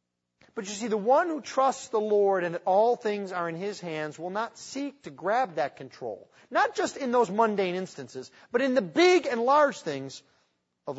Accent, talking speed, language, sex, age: American, 200 wpm, English, male, 40-59